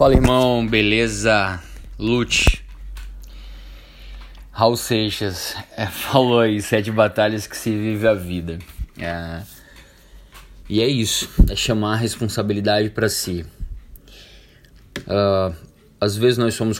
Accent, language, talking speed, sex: Brazilian, Portuguese, 100 wpm, male